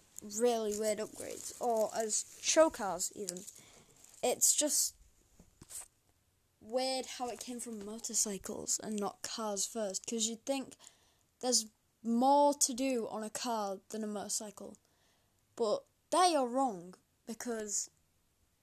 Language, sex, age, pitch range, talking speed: English, female, 10-29, 205-250 Hz, 120 wpm